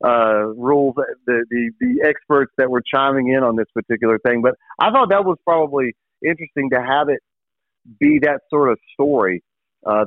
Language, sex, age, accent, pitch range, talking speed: English, male, 40-59, American, 120-145 Hz, 180 wpm